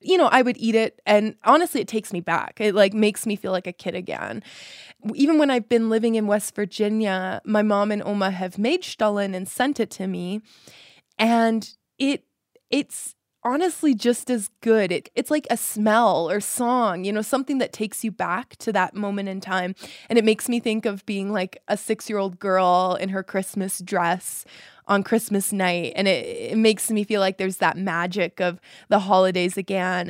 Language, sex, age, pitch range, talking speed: English, female, 20-39, 185-230 Hz, 195 wpm